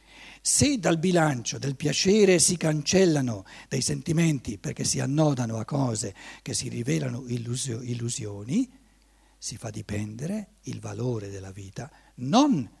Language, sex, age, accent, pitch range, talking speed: Italian, male, 60-79, native, 110-165 Hz, 120 wpm